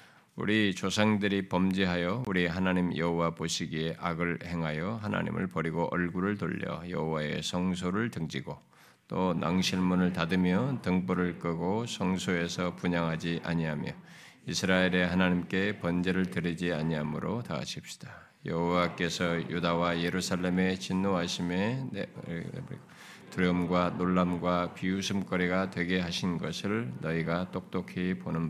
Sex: male